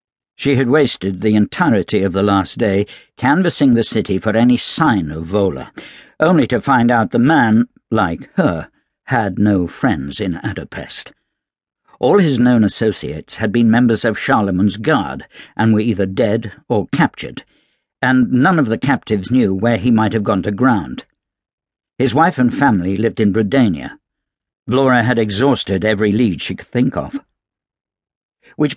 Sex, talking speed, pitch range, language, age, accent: male, 160 wpm, 100-125 Hz, English, 60-79, British